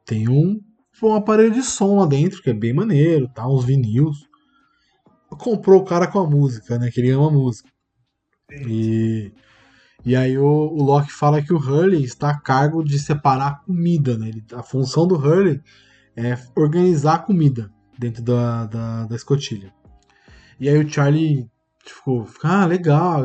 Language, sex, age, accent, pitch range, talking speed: Portuguese, male, 20-39, Brazilian, 125-170 Hz, 170 wpm